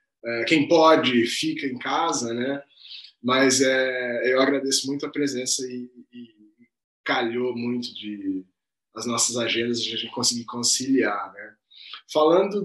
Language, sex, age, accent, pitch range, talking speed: Portuguese, male, 20-39, Brazilian, 115-160 Hz, 135 wpm